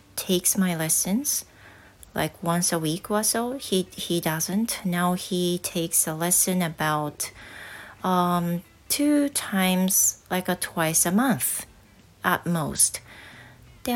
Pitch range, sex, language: 150-205 Hz, female, Japanese